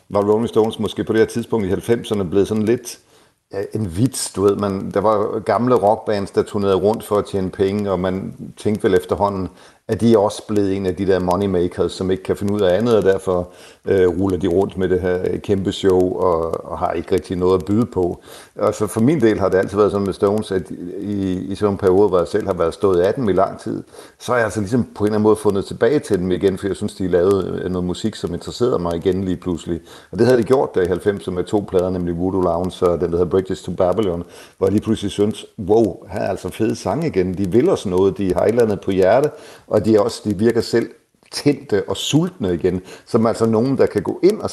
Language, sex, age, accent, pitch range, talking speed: Danish, male, 60-79, native, 90-105 Hz, 255 wpm